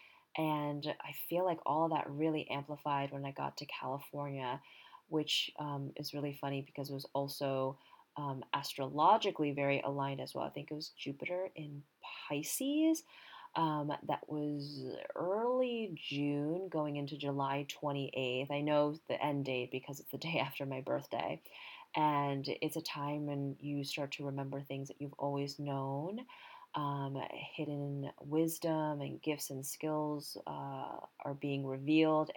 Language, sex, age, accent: English, female, 30-49, American